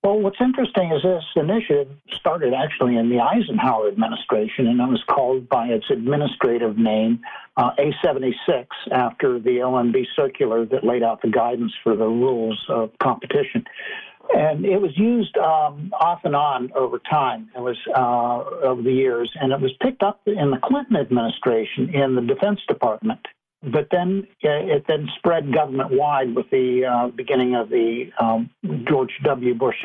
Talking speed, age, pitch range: 165 wpm, 60-79, 120-190 Hz